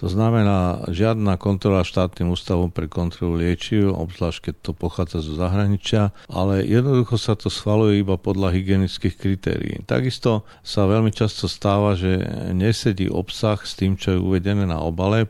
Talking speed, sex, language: 155 wpm, male, Slovak